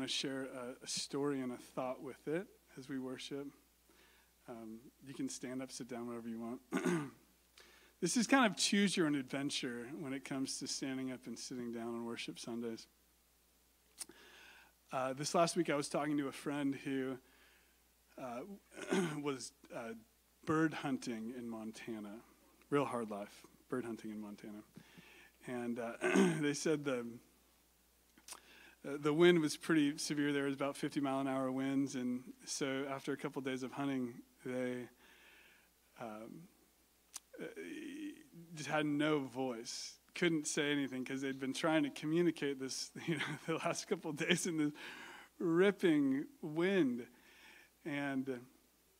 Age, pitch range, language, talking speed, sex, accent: 30-49, 125-155 Hz, English, 150 wpm, male, American